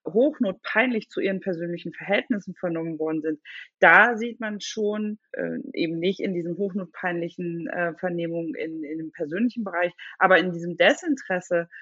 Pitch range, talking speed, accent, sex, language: 170-205 Hz, 145 wpm, German, female, German